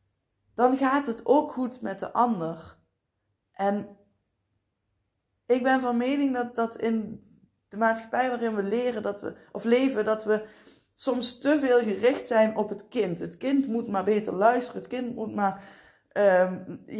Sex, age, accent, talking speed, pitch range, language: female, 20-39, Dutch, 160 wpm, 195-245 Hz, Dutch